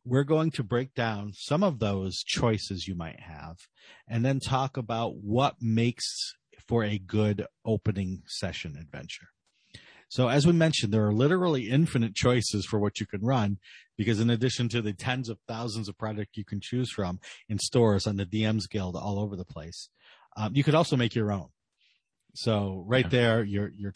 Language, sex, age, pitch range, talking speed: English, male, 40-59, 100-120 Hz, 185 wpm